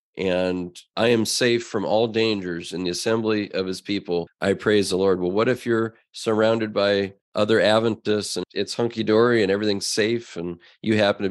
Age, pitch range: 40-59, 95-110 Hz